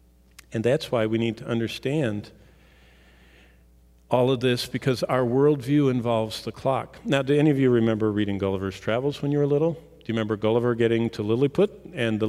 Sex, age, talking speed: male, 50-69, 185 wpm